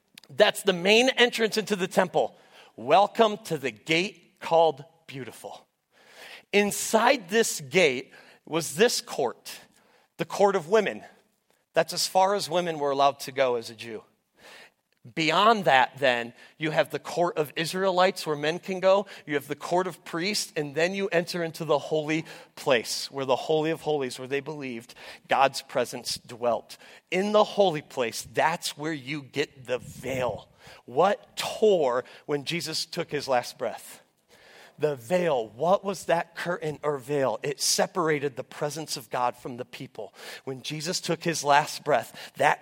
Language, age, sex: English, 40-59, male